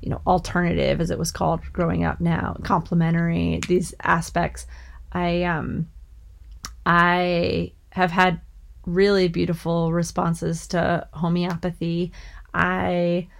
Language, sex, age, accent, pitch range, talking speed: English, female, 30-49, American, 155-180 Hz, 105 wpm